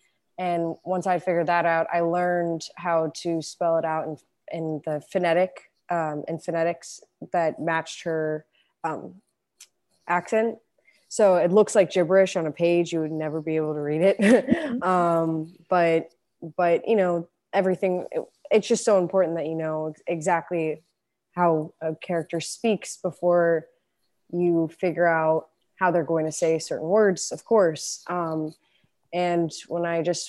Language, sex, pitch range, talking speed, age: English, female, 160-185 Hz, 155 wpm, 20-39